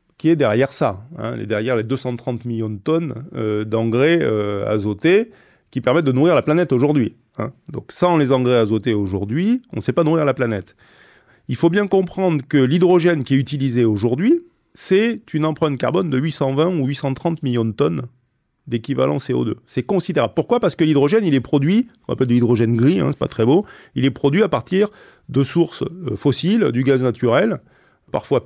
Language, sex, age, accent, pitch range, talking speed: French, male, 30-49, French, 115-165 Hz, 185 wpm